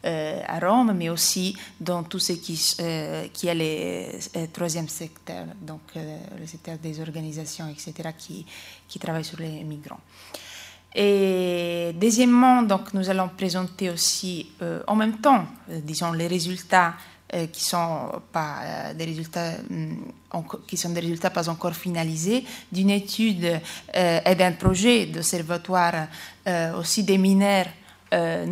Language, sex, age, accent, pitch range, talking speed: French, female, 20-39, Italian, 170-205 Hz, 130 wpm